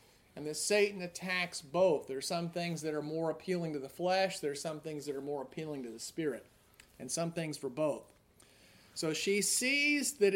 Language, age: English, 40-59